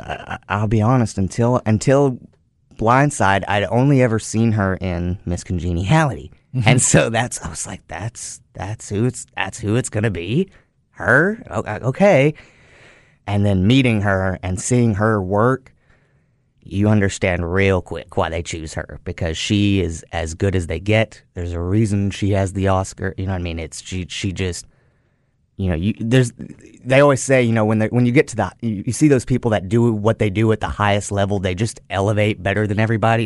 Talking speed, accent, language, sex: 190 wpm, American, English, male